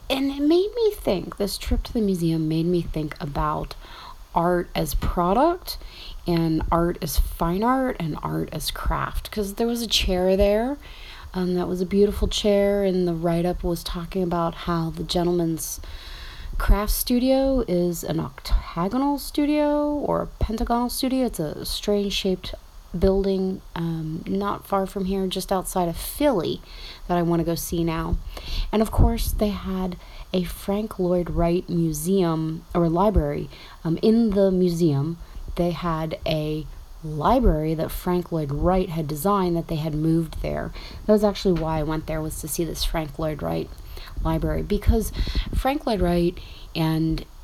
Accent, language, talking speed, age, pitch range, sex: American, English, 165 wpm, 30-49, 160-195 Hz, female